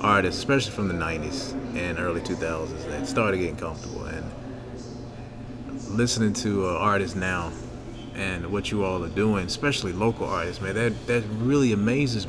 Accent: American